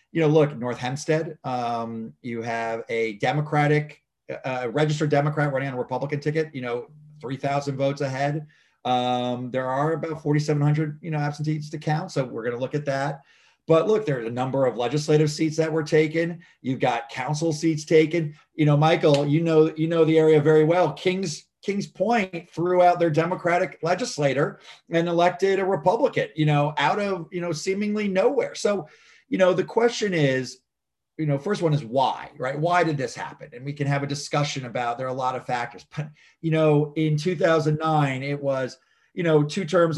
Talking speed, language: 195 wpm, English